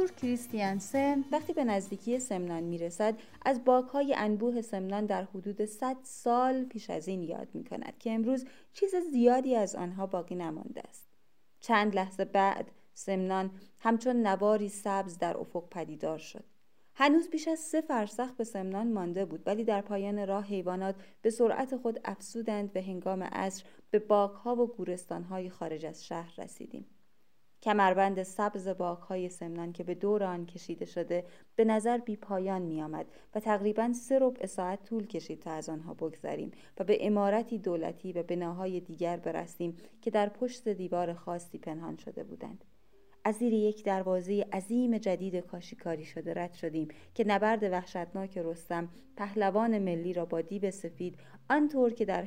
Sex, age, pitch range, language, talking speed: female, 30-49, 175-225 Hz, Persian, 155 wpm